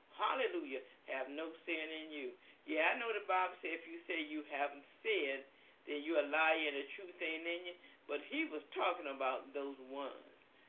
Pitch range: 150-215 Hz